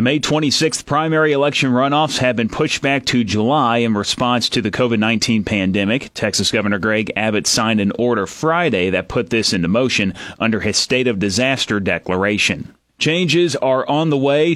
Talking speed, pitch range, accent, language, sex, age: 175 wpm, 110-135 Hz, American, English, male, 30-49